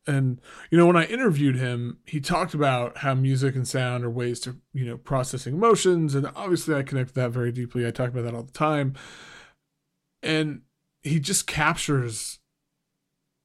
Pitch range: 125-155 Hz